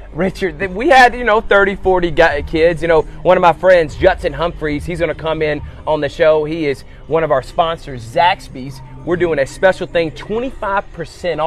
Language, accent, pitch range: English, American, 135-180 Hz